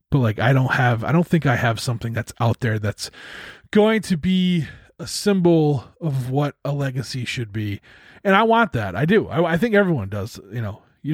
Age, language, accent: 30-49, English, American